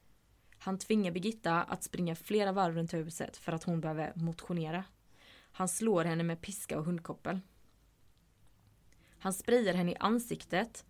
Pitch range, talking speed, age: 160-200 Hz, 145 wpm, 20-39